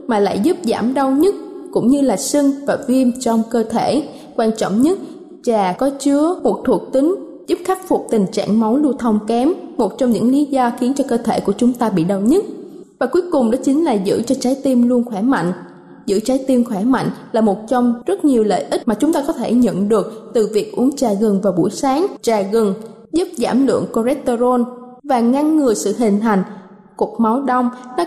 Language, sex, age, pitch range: Thai, female, 20-39, 225-290 Hz